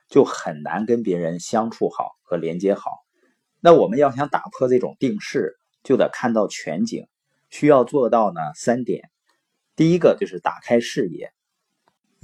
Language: Chinese